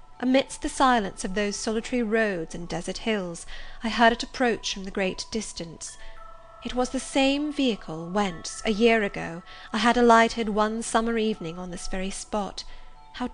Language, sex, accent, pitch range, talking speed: English, female, British, 185-230 Hz, 165 wpm